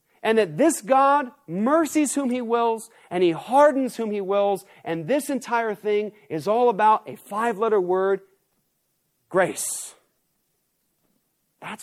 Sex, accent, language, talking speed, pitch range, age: male, American, English, 130 wpm, 190-260 Hz, 40-59